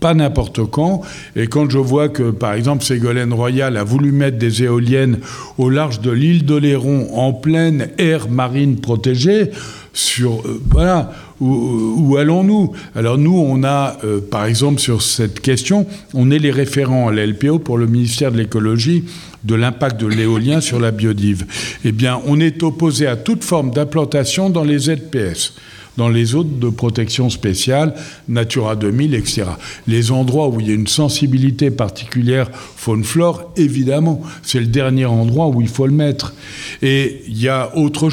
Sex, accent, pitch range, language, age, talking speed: male, French, 120-155 Hz, French, 60-79, 170 wpm